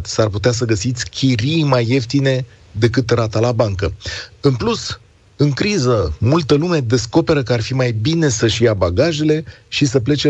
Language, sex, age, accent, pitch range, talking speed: Romanian, male, 40-59, native, 105-130 Hz, 170 wpm